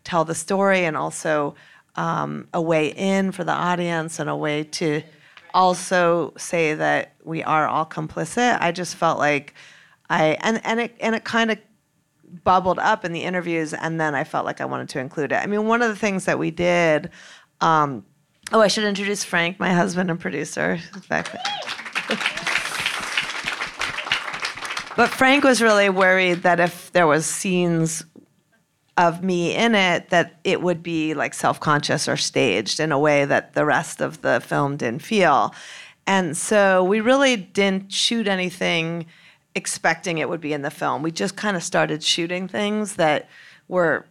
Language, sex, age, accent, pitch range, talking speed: English, female, 30-49, American, 160-195 Hz, 165 wpm